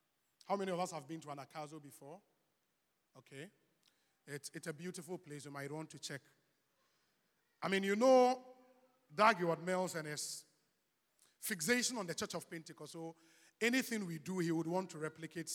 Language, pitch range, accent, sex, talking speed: English, 165-235 Hz, Nigerian, male, 165 wpm